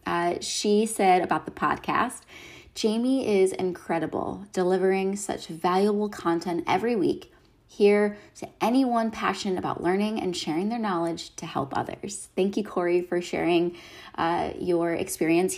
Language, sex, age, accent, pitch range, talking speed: English, female, 20-39, American, 175-220 Hz, 140 wpm